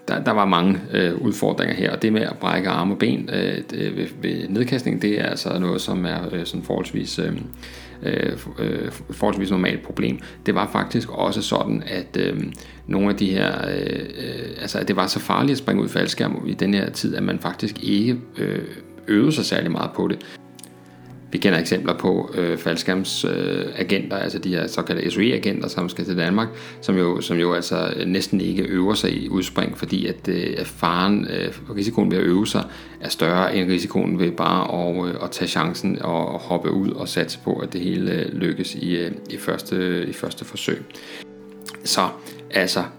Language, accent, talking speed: Danish, native, 190 wpm